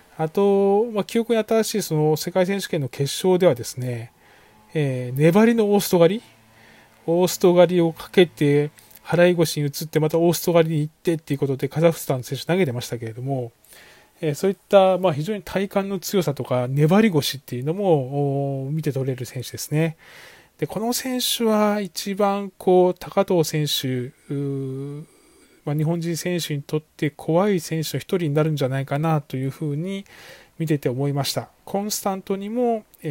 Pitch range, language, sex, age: 140-185 Hz, Japanese, male, 20-39